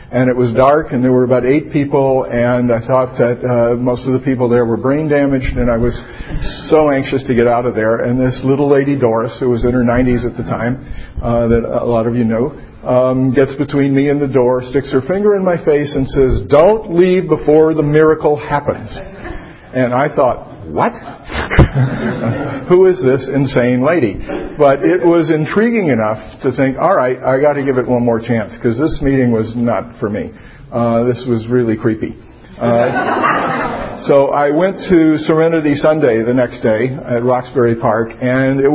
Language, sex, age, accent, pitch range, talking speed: English, male, 50-69, American, 120-145 Hz, 195 wpm